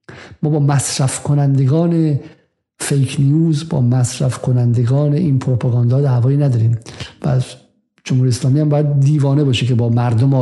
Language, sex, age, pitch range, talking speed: Persian, male, 50-69, 125-155 Hz, 130 wpm